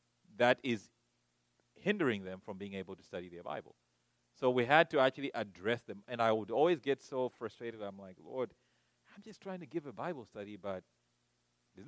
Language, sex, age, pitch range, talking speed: English, male, 30-49, 100-160 Hz, 190 wpm